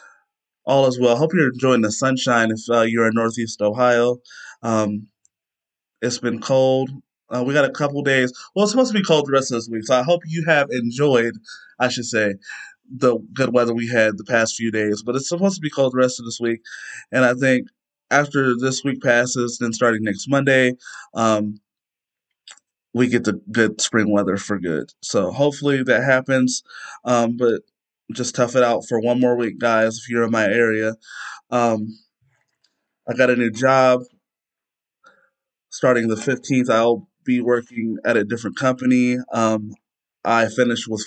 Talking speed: 180 wpm